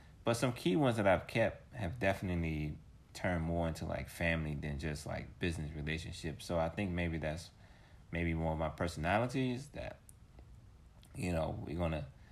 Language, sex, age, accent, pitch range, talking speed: English, male, 30-49, American, 75-95 Hz, 165 wpm